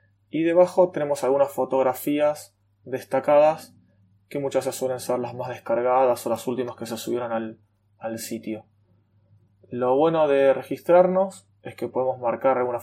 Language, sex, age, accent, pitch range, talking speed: Spanish, male, 20-39, Argentinian, 105-135 Hz, 150 wpm